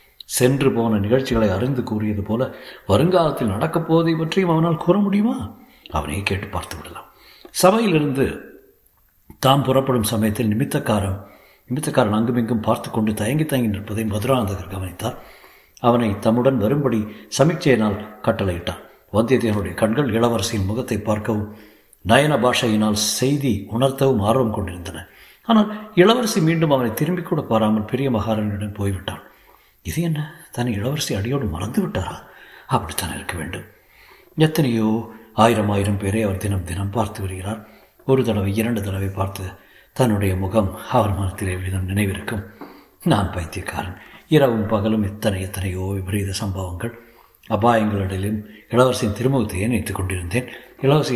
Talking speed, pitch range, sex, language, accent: 115 wpm, 100-135 Hz, male, Tamil, native